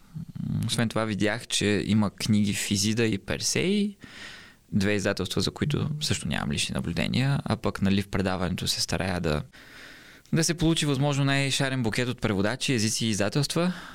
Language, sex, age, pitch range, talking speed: Bulgarian, male, 20-39, 95-145 Hz, 155 wpm